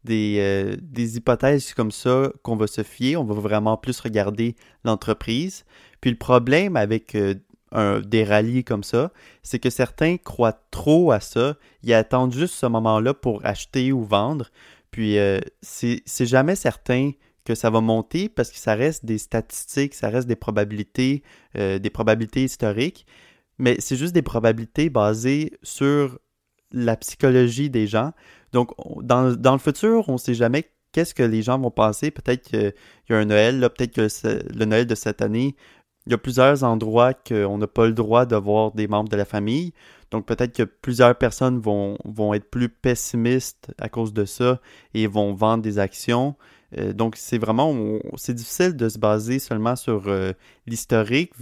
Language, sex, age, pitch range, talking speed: French, male, 30-49, 110-130 Hz, 175 wpm